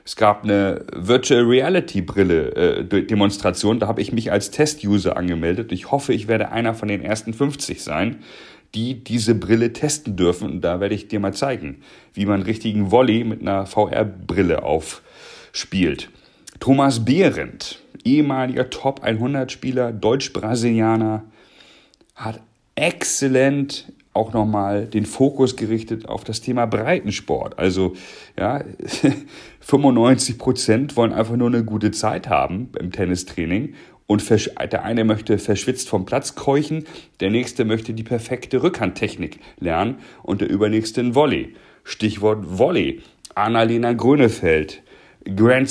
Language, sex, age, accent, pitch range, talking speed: German, male, 40-59, German, 105-130 Hz, 125 wpm